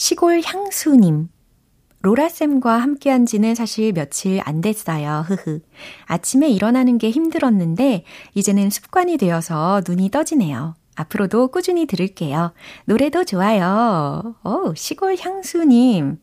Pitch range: 165-245 Hz